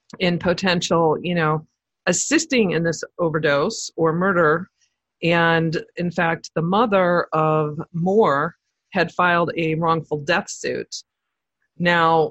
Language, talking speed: English, 115 wpm